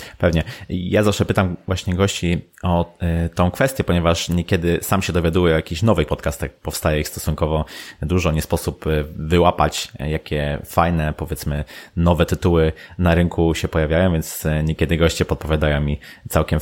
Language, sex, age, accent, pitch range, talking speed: Polish, male, 30-49, native, 80-95 Hz, 145 wpm